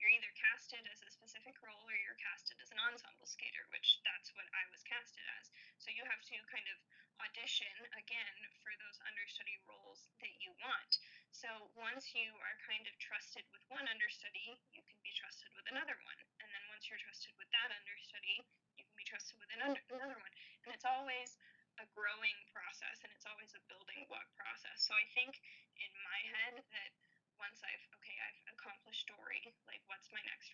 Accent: American